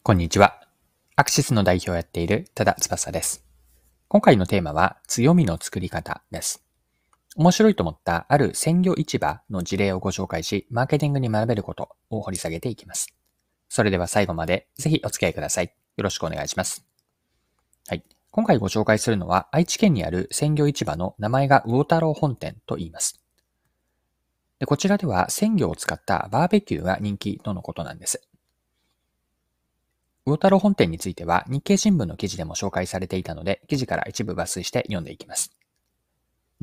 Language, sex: Japanese, male